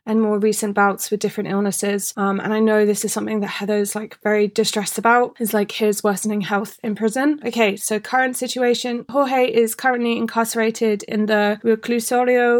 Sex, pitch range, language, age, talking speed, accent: female, 210-230 Hz, English, 20-39, 175 wpm, British